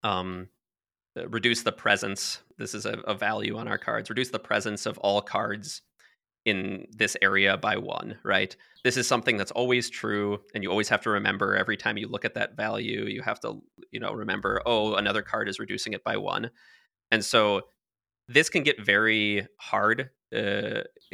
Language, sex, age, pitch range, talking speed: English, male, 20-39, 100-115 Hz, 185 wpm